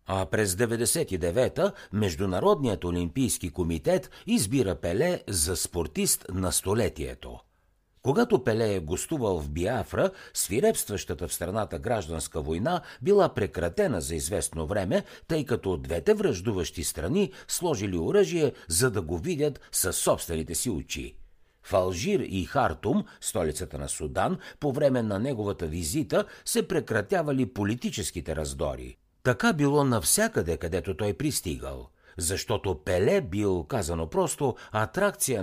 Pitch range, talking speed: 85-130 Hz, 120 wpm